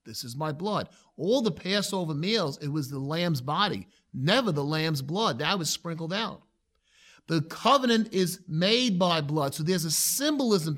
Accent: American